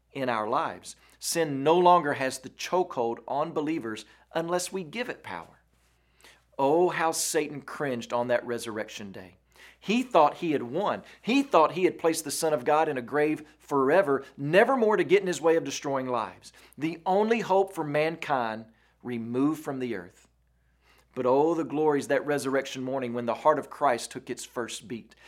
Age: 40-59